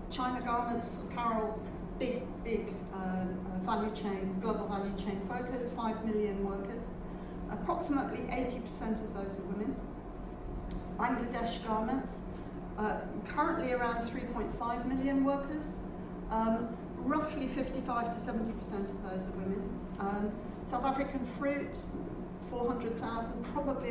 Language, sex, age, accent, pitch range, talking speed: English, female, 40-59, British, 205-250 Hz, 115 wpm